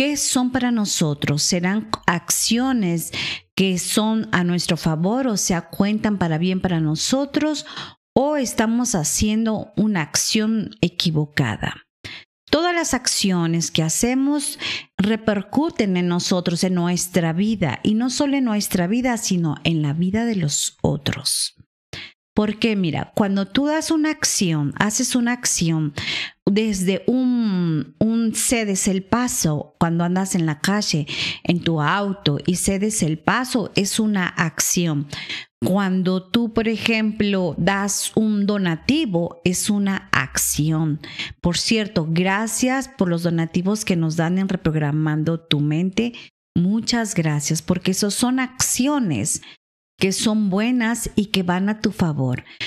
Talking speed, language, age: 135 wpm, Spanish, 40-59